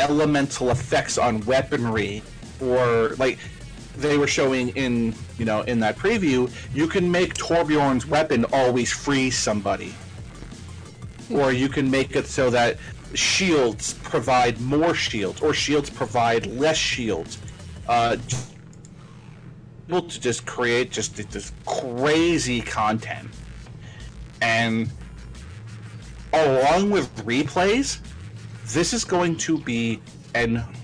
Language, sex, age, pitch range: English, male, 40-59, 115-150 Hz